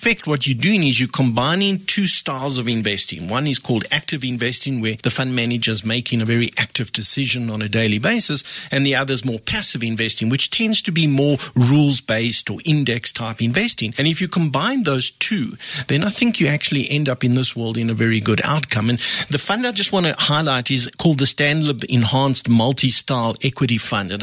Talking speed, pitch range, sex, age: 210 wpm, 120-150 Hz, male, 50-69